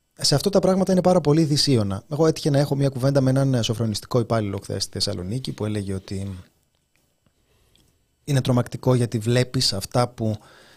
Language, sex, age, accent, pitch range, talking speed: Greek, male, 30-49, native, 115-140 Hz, 165 wpm